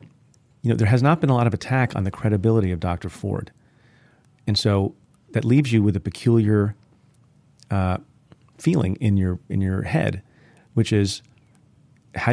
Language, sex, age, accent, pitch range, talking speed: English, male, 40-59, American, 100-130 Hz, 165 wpm